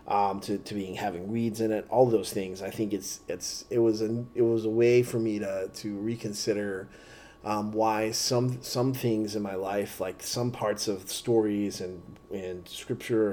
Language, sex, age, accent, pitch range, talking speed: English, male, 30-49, American, 105-120 Hz, 195 wpm